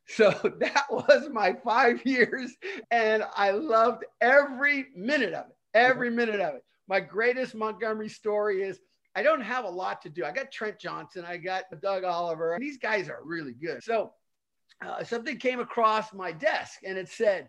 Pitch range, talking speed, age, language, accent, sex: 180-240 Hz, 180 wpm, 50-69, English, American, male